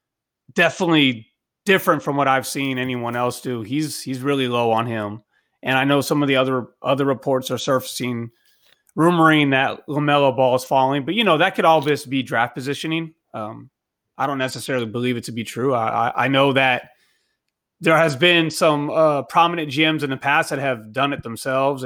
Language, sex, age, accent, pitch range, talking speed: English, male, 30-49, American, 125-155 Hz, 195 wpm